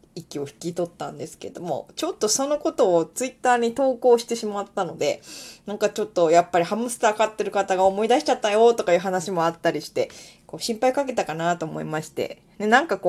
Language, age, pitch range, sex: Japanese, 20-39, 175-255 Hz, female